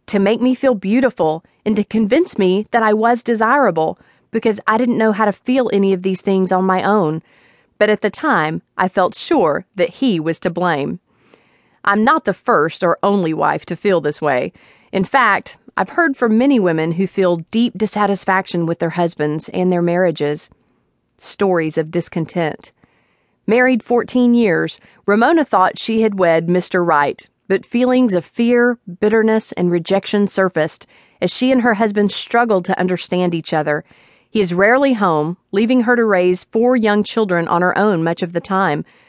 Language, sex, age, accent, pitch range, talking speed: English, female, 40-59, American, 175-225 Hz, 180 wpm